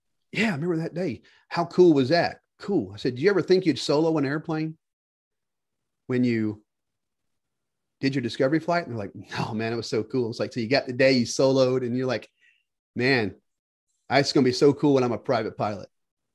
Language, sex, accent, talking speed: English, male, American, 220 wpm